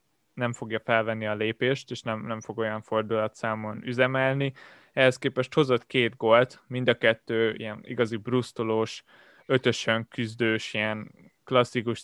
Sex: male